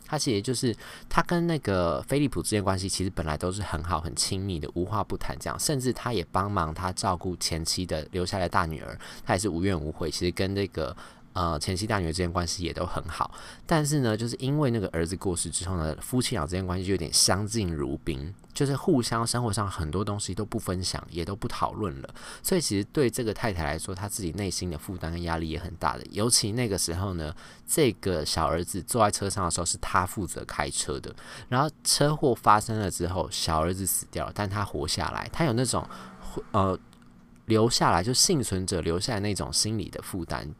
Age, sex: 20-39, male